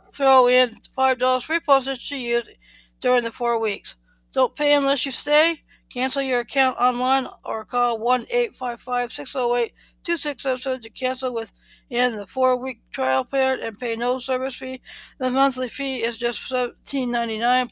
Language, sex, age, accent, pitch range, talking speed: English, female, 60-79, American, 240-270 Hz, 145 wpm